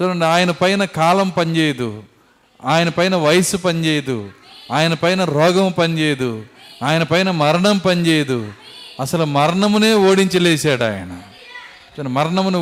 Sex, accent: male, native